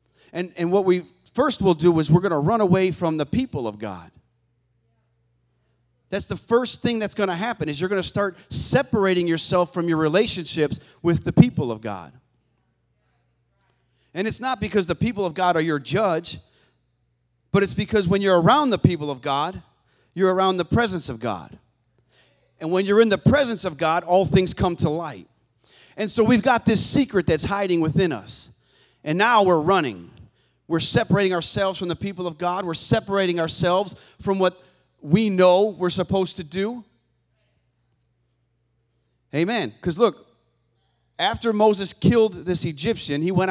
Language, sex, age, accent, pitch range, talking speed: English, male, 40-59, American, 135-195 Hz, 170 wpm